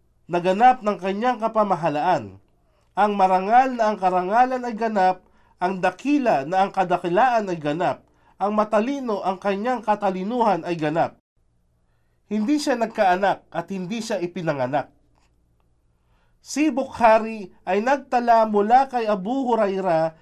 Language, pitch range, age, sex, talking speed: Filipino, 175-235 Hz, 50-69, male, 120 wpm